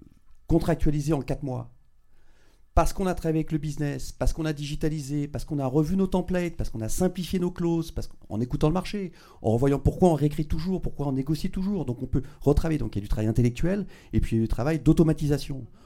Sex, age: male, 40-59